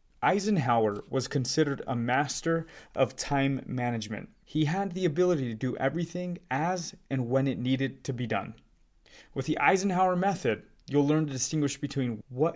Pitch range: 125-165 Hz